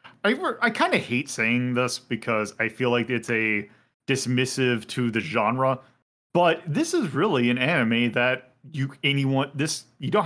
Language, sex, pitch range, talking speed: English, male, 115-135 Hz, 165 wpm